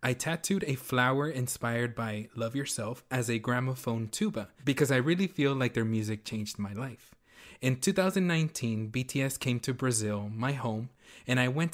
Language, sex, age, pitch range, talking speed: English, male, 20-39, 115-135 Hz, 170 wpm